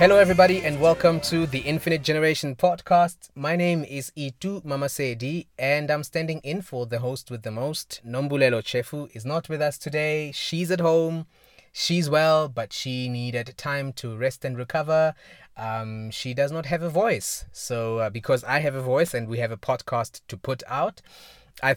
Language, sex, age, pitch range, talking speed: English, male, 20-39, 115-150 Hz, 180 wpm